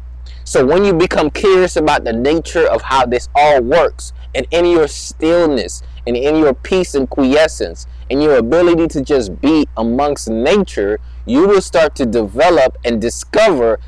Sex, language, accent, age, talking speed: male, English, American, 20-39, 165 wpm